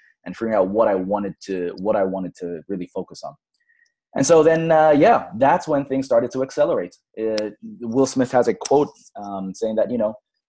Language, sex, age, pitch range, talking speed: English, male, 20-39, 100-125 Hz, 205 wpm